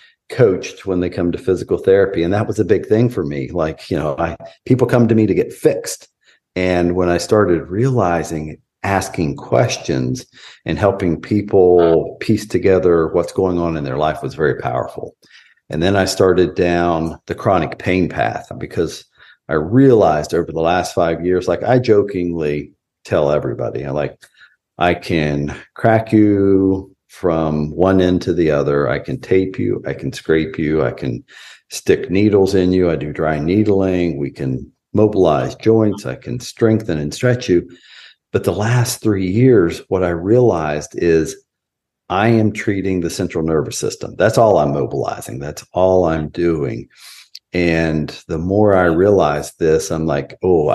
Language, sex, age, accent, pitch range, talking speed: English, male, 50-69, American, 80-105 Hz, 170 wpm